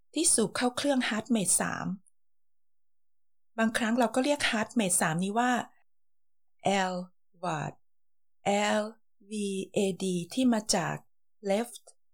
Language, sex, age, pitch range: Thai, female, 20-39, 180-240 Hz